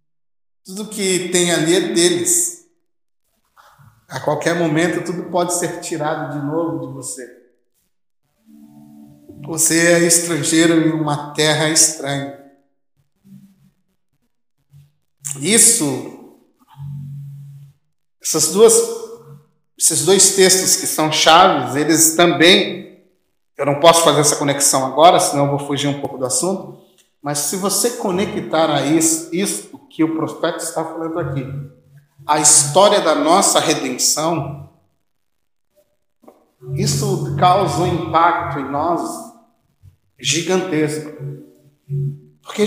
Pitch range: 145-195 Hz